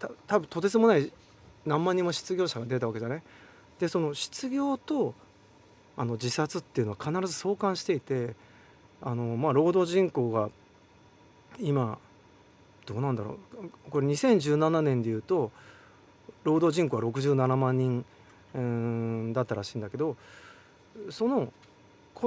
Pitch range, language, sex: 115-185 Hz, Japanese, male